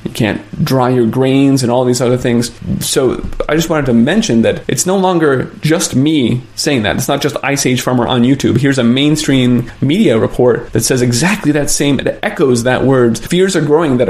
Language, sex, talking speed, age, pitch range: English, male, 215 wpm, 20-39, 120-150 Hz